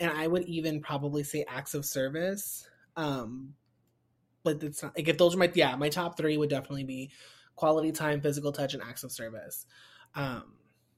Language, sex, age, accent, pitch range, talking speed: English, male, 20-39, American, 125-160 Hz, 185 wpm